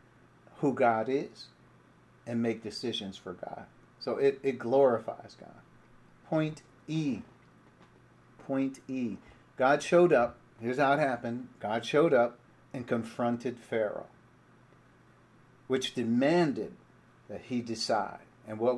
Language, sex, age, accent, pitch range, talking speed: English, male, 50-69, American, 115-140 Hz, 120 wpm